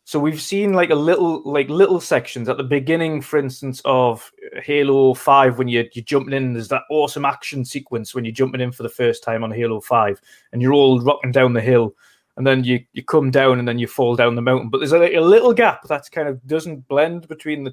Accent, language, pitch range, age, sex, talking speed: British, English, 125-150 Hz, 20-39, male, 240 wpm